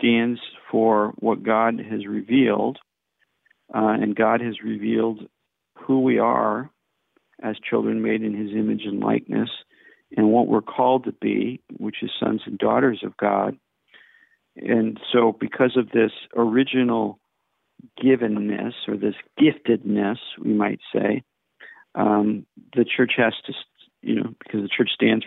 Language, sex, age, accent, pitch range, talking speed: English, male, 50-69, American, 110-125 Hz, 140 wpm